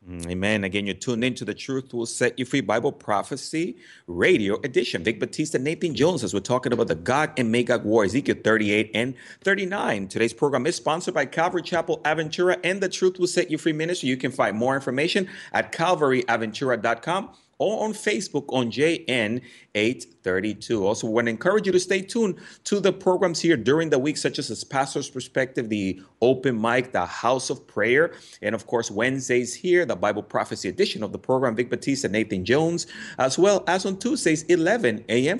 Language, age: English, 30-49